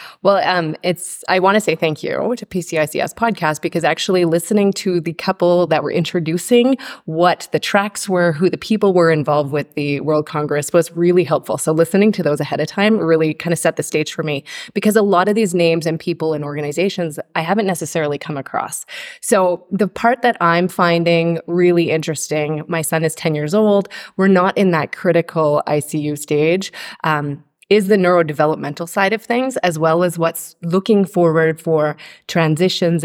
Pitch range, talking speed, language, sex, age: 155-185 Hz, 185 wpm, English, female, 20-39